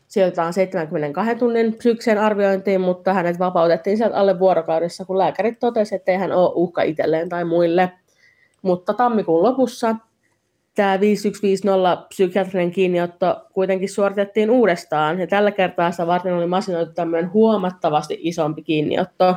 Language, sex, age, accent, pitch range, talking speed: Finnish, female, 30-49, native, 170-205 Hz, 130 wpm